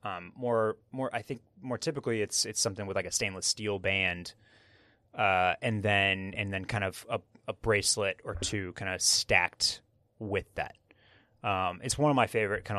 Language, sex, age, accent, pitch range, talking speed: English, male, 30-49, American, 105-120 Hz, 190 wpm